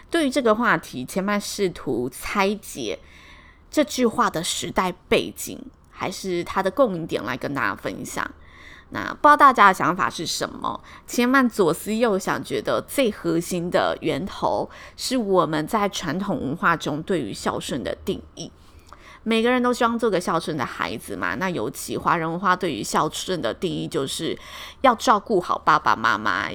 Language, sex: Chinese, female